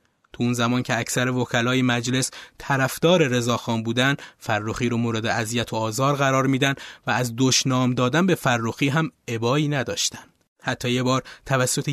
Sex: male